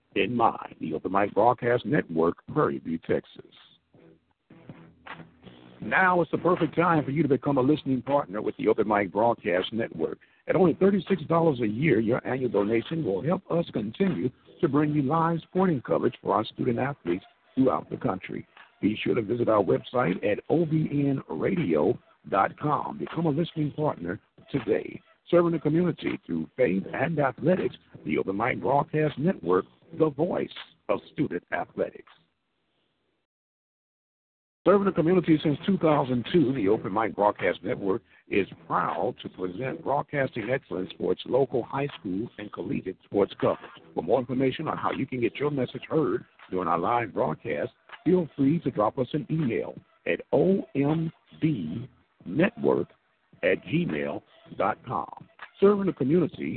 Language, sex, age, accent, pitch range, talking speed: English, male, 60-79, American, 130-165 Hz, 145 wpm